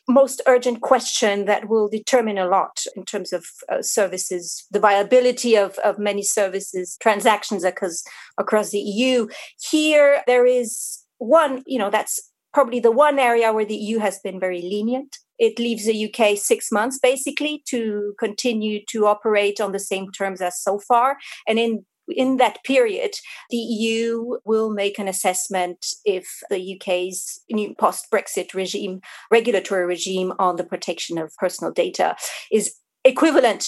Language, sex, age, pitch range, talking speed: English, female, 40-59, 200-255 Hz, 155 wpm